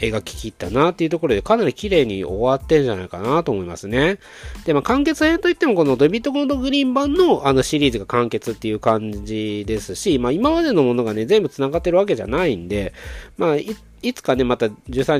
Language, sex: Japanese, male